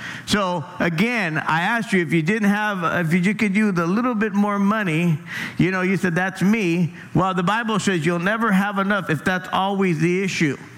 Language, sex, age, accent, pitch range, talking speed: English, male, 50-69, American, 170-210 Hz, 205 wpm